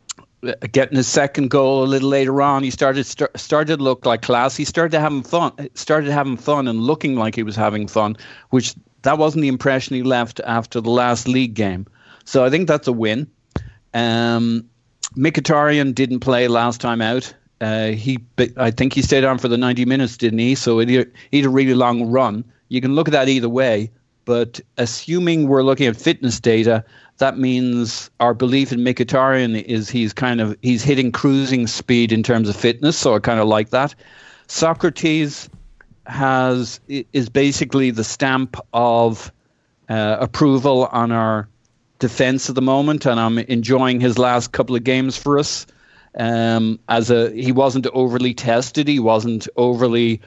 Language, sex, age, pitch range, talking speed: English, male, 40-59, 115-135 Hz, 180 wpm